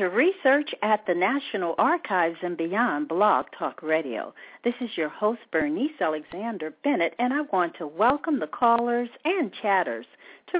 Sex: female